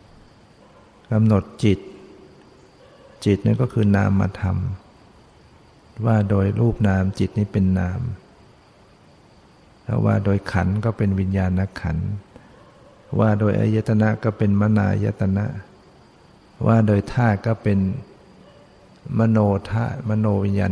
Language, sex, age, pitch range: Thai, male, 60-79, 95-115 Hz